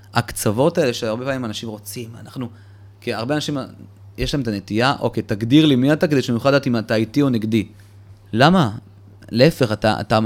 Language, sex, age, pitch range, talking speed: Hebrew, male, 30-49, 100-140 Hz, 195 wpm